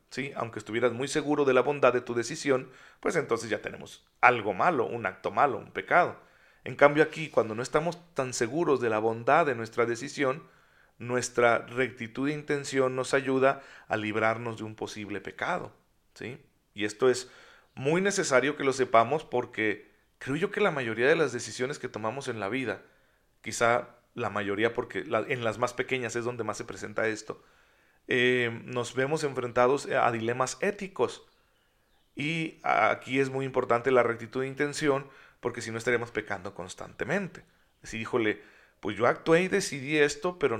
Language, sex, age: Spanish, male, 40-59